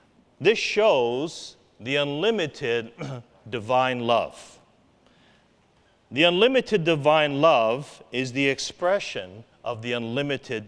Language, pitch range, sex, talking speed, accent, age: English, 120-150 Hz, male, 90 wpm, American, 50-69